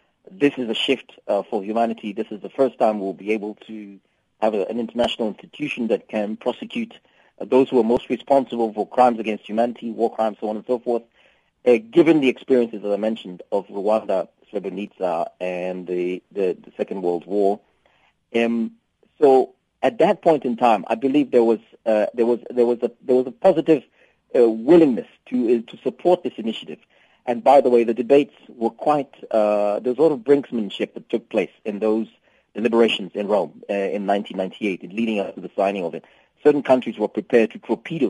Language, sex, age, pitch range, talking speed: English, male, 40-59, 105-130 Hz, 200 wpm